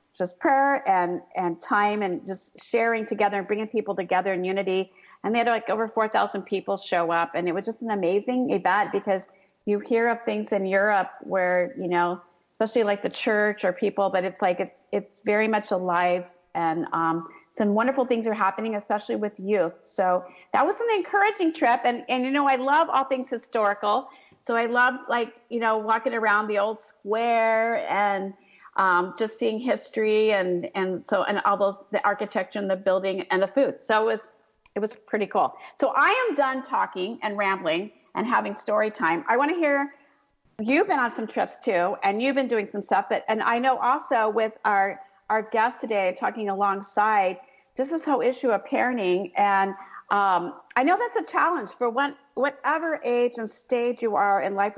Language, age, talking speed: English, 40-59, 195 wpm